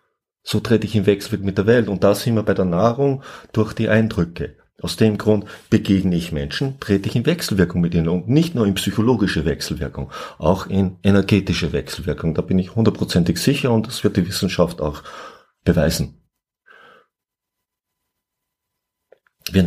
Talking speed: 160 wpm